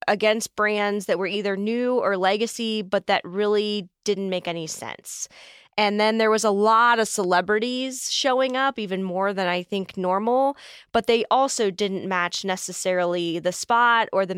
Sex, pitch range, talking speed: female, 185-220 Hz, 170 wpm